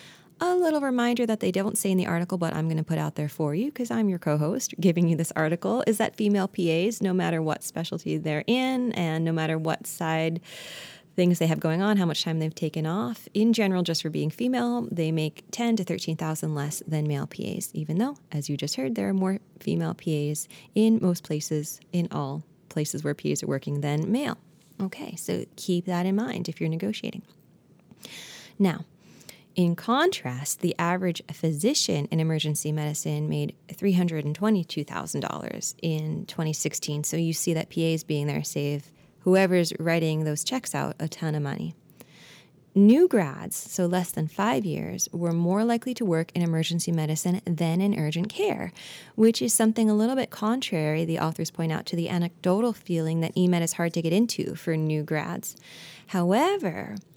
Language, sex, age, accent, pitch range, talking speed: English, female, 20-39, American, 155-200 Hz, 185 wpm